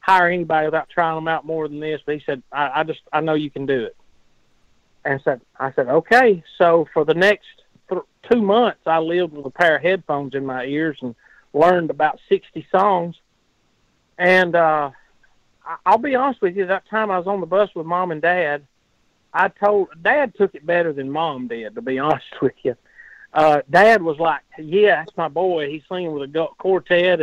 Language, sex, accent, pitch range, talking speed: English, male, American, 145-185 Hz, 205 wpm